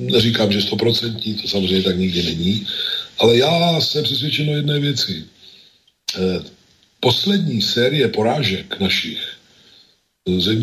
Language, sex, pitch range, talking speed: Slovak, male, 100-125 Hz, 115 wpm